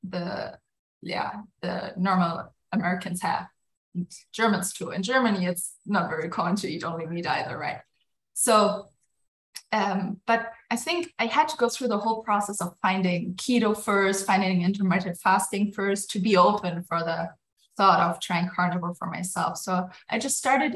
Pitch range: 180-225 Hz